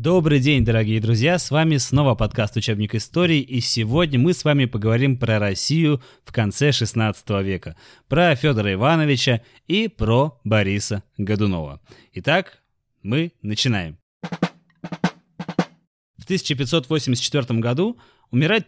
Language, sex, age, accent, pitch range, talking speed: Russian, male, 20-39, native, 115-160 Hz, 120 wpm